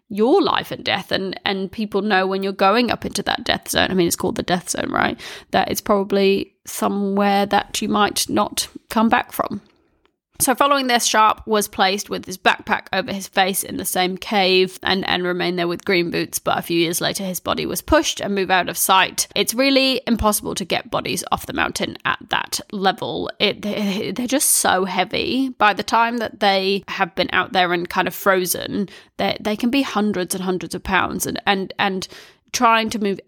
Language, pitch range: English, 185-215 Hz